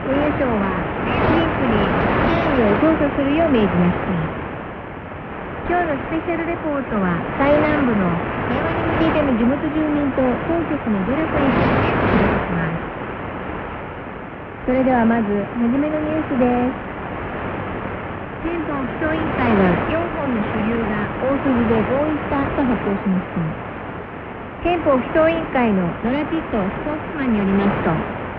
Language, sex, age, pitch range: Korean, female, 50-69, 220-310 Hz